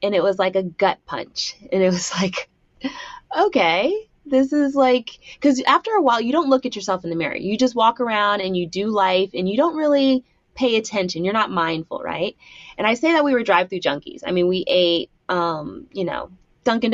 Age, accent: 20-39, American